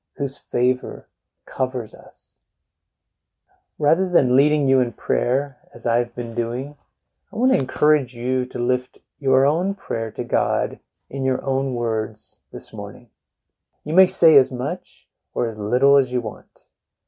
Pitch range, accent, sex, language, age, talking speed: 120-150 Hz, American, male, English, 30-49, 150 wpm